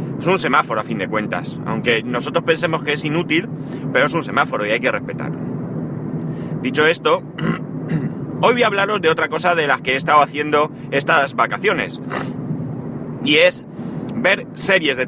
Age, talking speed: 30-49, 170 wpm